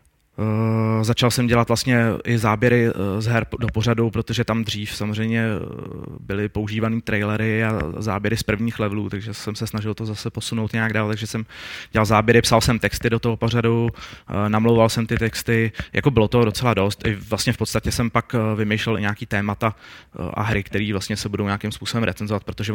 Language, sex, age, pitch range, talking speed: Czech, male, 20-39, 105-115 Hz, 185 wpm